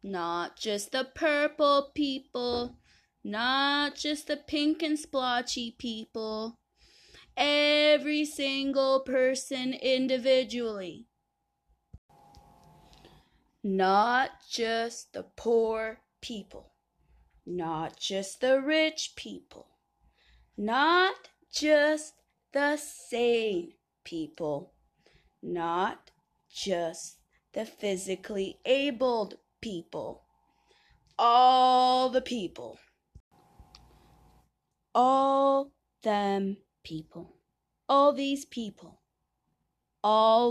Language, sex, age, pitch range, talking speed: English, female, 20-39, 200-275 Hz, 70 wpm